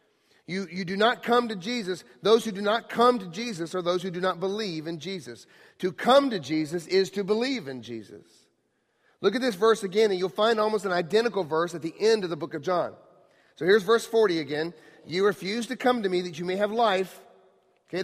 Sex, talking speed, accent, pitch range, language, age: male, 225 wpm, American, 180-225 Hz, English, 40-59